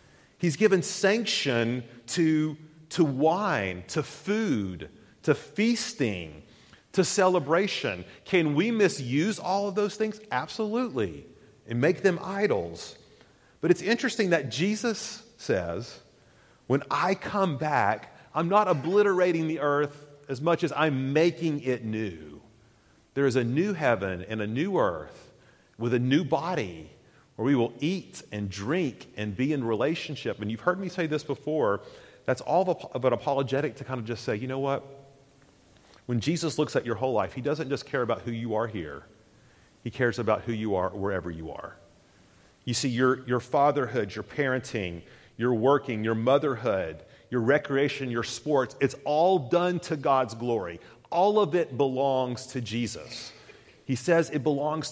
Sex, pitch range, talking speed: male, 120-170 Hz, 160 wpm